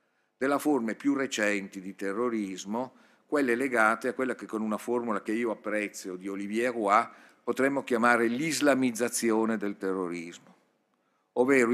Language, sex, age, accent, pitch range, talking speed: Italian, male, 50-69, native, 105-140 Hz, 135 wpm